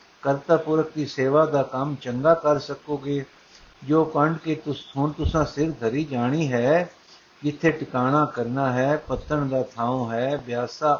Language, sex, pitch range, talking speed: Punjabi, male, 130-150 Hz, 155 wpm